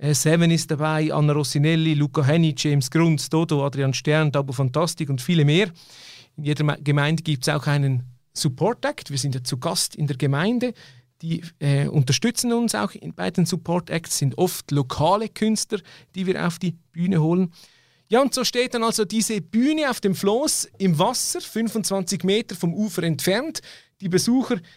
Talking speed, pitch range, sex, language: 175 wpm, 150-195 Hz, male, German